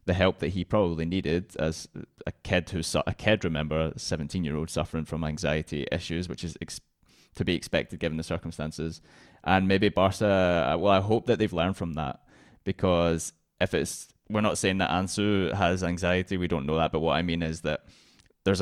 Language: English